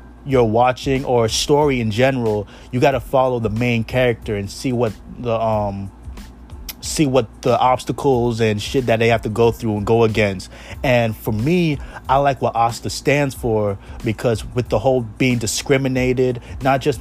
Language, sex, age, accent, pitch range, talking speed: English, male, 30-49, American, 110-130 Hz, 175 wpm